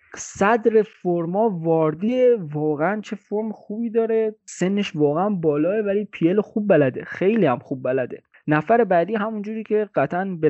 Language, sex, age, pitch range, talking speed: Persian, male, 20-39, 140-200 Hz, 145 wpm